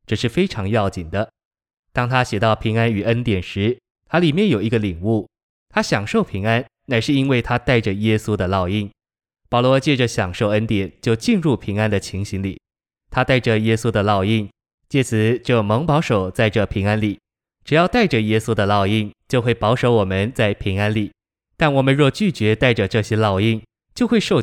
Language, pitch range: Chinese, 105-125 Hz